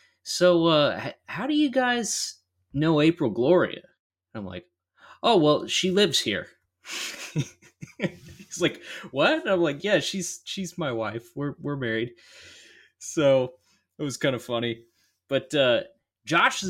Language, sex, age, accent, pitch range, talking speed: English, male, 20-39, American, 115-140 Hz, 145 wpm